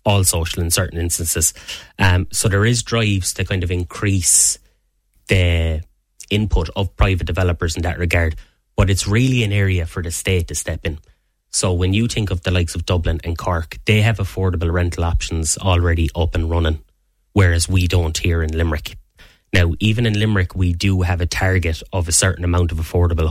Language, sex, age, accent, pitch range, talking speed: English, male, 20-39, Irish, 85-95 Hz, 190 wpm